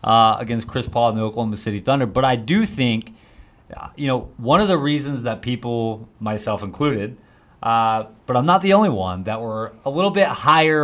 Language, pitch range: English, 110-140 Hz